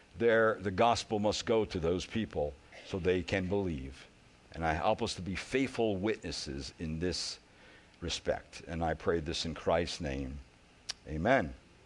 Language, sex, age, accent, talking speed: English, male, 60-79, American, 155 wpm